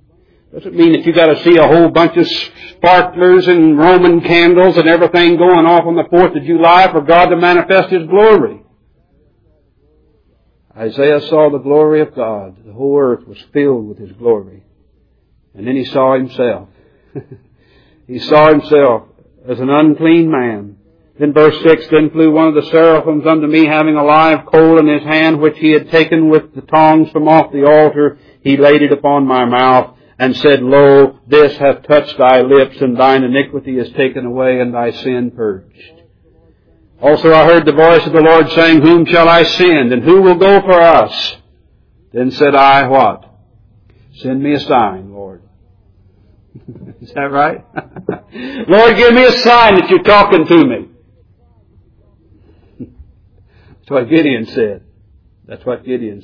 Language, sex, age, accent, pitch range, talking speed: English, male, 60-79, American, 125-165 Hz, 170 wpm